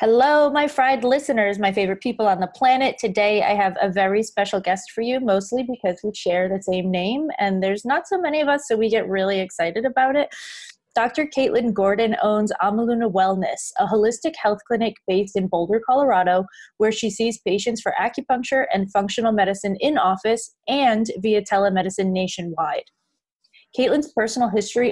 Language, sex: English, female